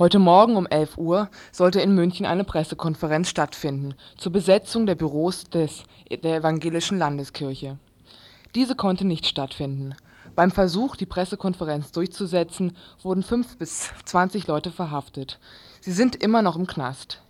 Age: 20-39